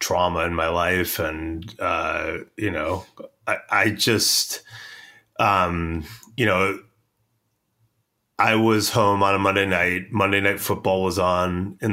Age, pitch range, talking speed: 30-49, 85-105 Hz, 135 wpm